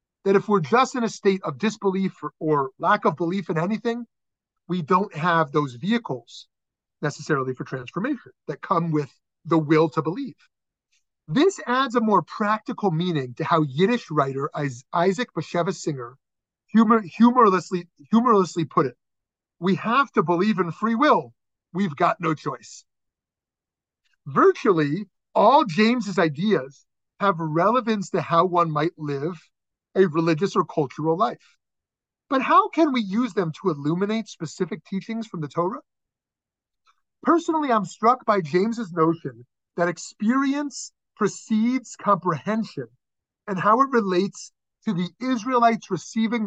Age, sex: 30-49, male